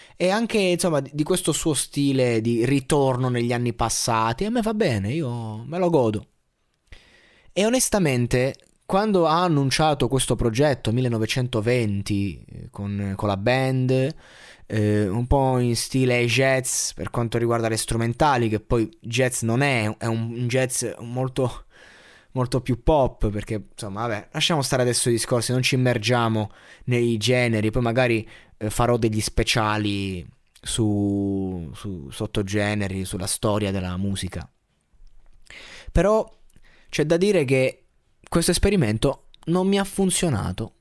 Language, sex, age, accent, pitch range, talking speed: Italian, male, 20-39, native, 110-150 Hz, 135 wpm